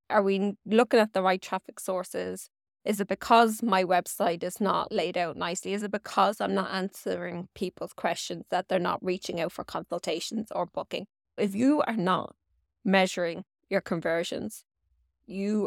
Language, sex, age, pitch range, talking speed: English, female, 20-39, 175-210 Hz, 165 wpm